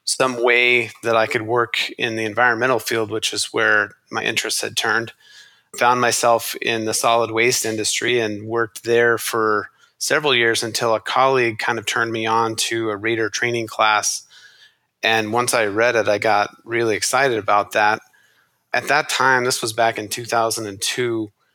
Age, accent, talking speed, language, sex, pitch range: 30-49, American, 175 wpm, English, male, 110-120 Hz